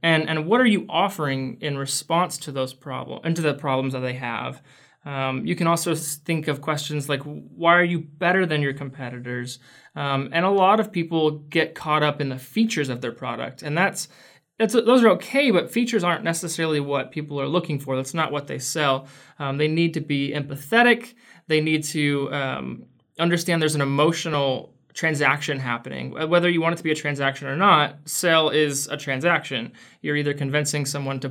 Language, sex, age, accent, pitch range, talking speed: English, male, 20-39, American, 140-170 Hz, 195 wpm